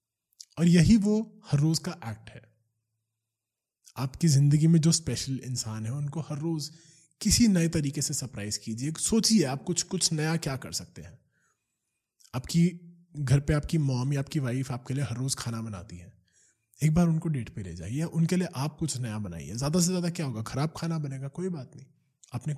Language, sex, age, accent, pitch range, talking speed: Hindi, male, 20-39, native, 115-160 Hz, 195 wpm